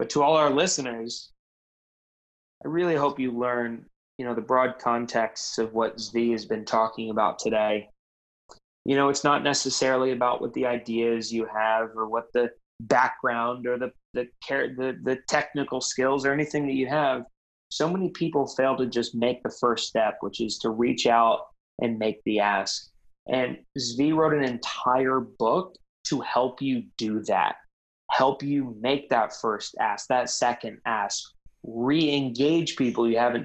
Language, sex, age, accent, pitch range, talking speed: English, male, 20-39, American, 115-135 Hz, 165 wpm